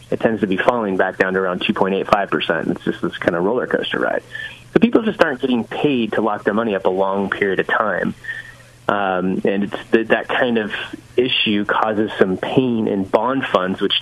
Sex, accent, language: male, American, English